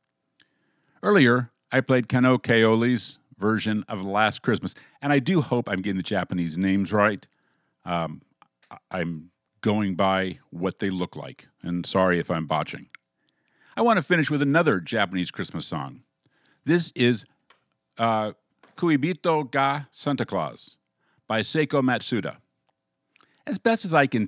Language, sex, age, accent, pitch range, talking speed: English, male, 50-69, American, 95-135 Hz, 140 wpm